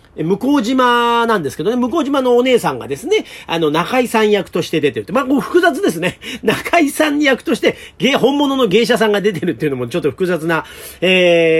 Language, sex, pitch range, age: Japanese, male, 165-250 Hz, 40-59